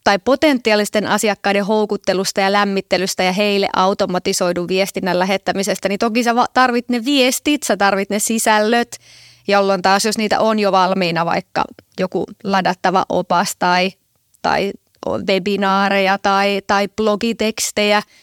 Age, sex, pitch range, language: 20-39, female, 195-220 Hz, Finnish